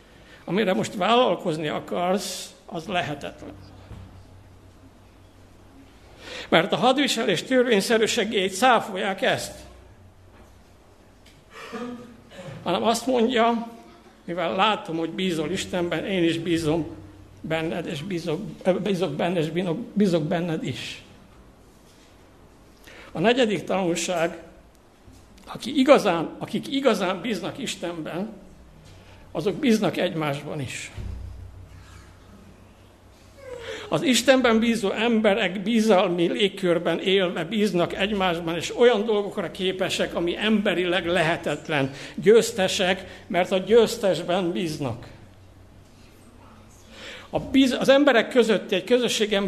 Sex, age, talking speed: male, 60-79, 85 wpm